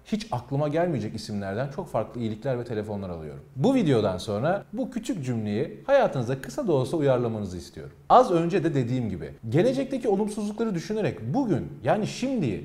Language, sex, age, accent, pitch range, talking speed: Turkish, male, 40-59, native, 110-185 Hz, 155 wpm